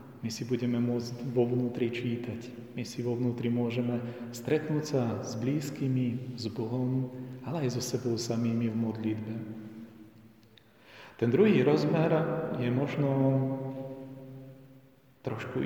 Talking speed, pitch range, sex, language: 120 wpm, 110-135 Hz, male, Slovak